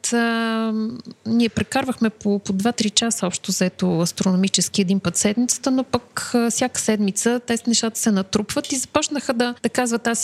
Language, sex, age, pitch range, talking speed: Bulgarian, female, 30-49, 195-230 Hz, 165 wpm